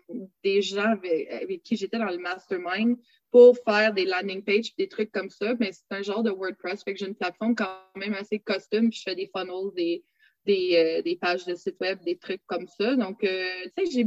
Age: 20-39